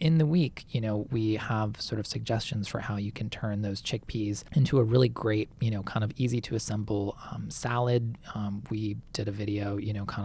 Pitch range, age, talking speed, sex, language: 105-120 Hz, 20-39, 225 wpm, male, English